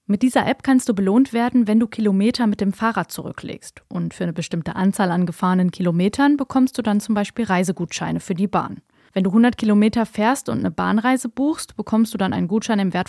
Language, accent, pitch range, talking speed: German, German, 190-235 Hz, 215 wpm